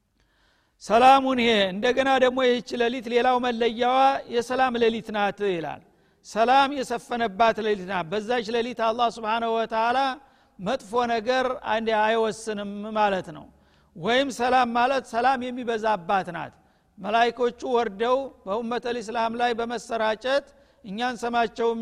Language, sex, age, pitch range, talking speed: Amharic, male, 50-69, 220-245 Hz, 105 wpm